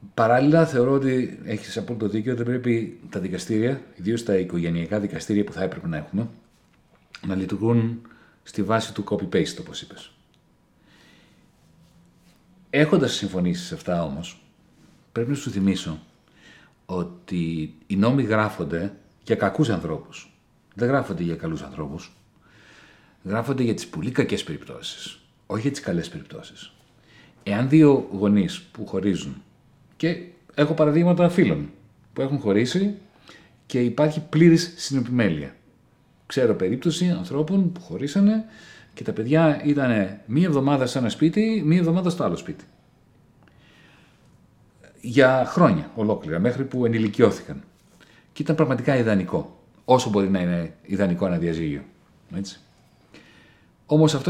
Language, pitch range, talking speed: Greek, 100-155 Hz, 125 wpm